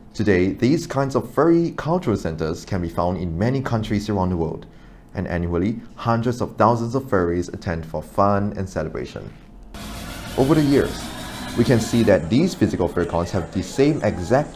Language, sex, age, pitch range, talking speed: English, male, 30-49, 90-120 Hz, 175 wpm